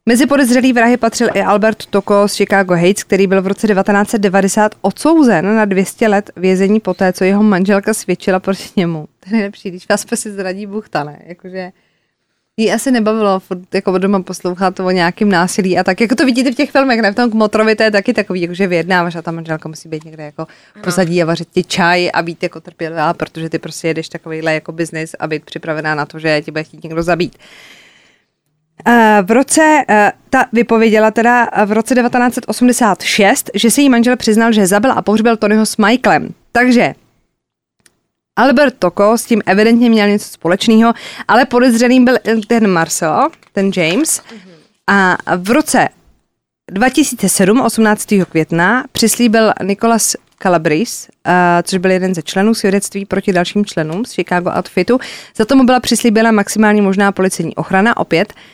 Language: Czech